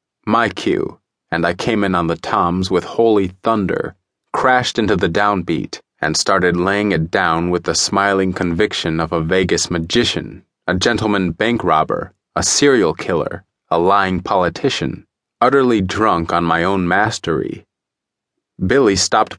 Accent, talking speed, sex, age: American, 145 wpm, male, 30-49